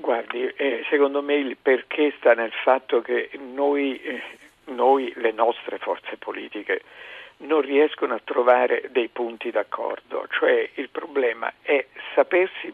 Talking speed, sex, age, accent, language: 135 wpm, male, 50-69, native, Italian